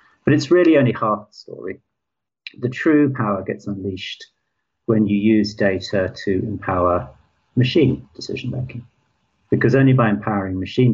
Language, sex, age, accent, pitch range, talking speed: English, male, 50-69, British, 95-115 Hz, 135 wpm